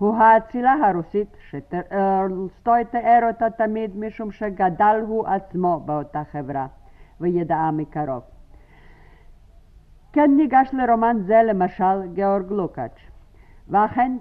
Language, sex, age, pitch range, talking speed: Hebrew, female, 50-69, 175-225 Hz, 95 wpm